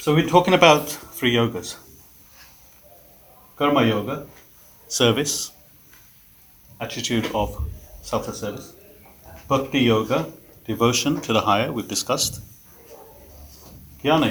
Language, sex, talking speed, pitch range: English, male, 90 wpm, 105-145 Hz